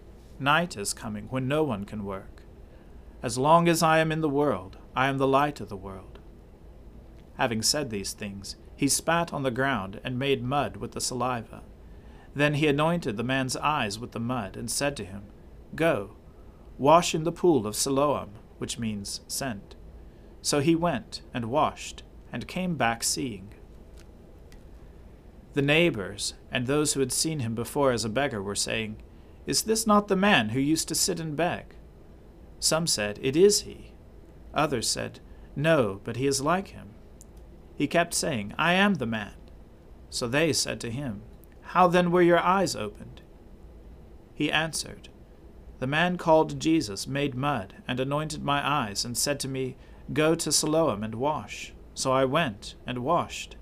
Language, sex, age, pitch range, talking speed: English, male, 40-59, 95-150 Hz, 170 wpm